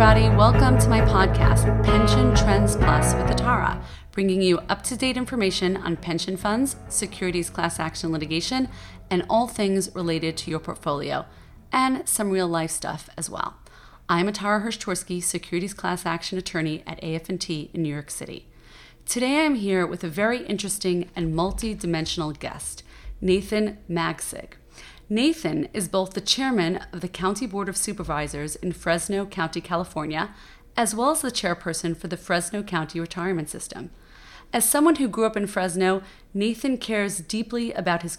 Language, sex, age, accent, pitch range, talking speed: English, female, 30-49, American, 160-205 Hz, 150 wpm